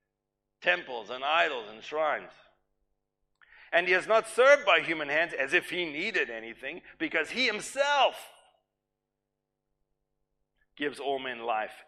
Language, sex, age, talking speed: English, male, 50-69, 125 wpm